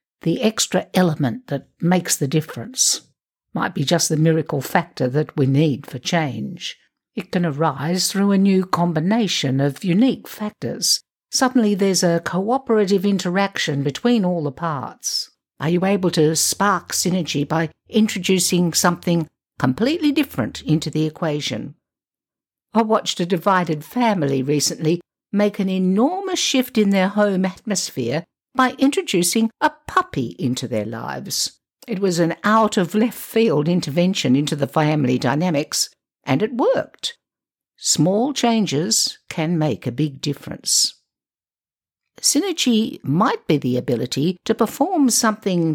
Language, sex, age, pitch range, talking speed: English, female, 60-79, 155-220 Hz, 130 wpm